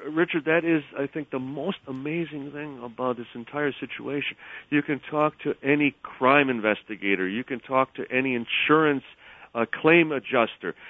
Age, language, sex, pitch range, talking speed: 50-69, English, male, 110-150 Hz, 160 wpm